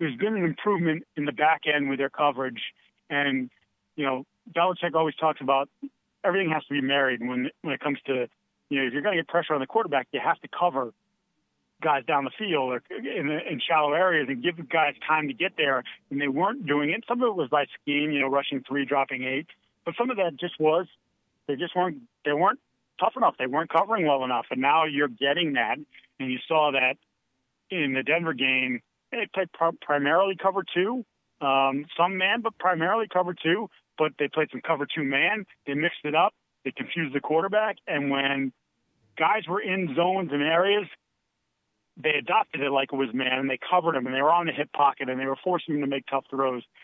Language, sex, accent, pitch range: English, male, American, 135-170 Hz